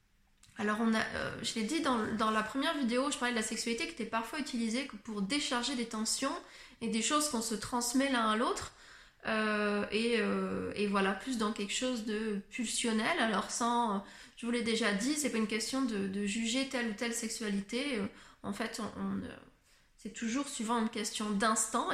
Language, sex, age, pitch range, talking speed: French, female, 20-39, 220-255 Hz, 200 wpm